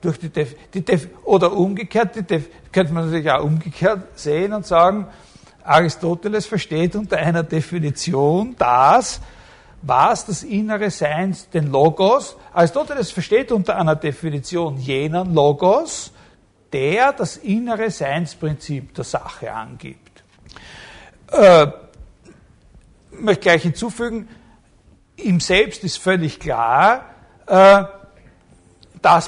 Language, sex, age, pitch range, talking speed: German, male, 60-79, 140-180 Hz, 115 wpm